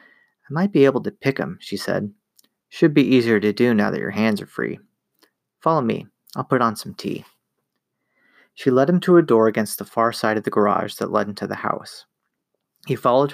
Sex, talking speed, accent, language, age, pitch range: male, 205 wpm, American, English, 30-49, 110-140 Hz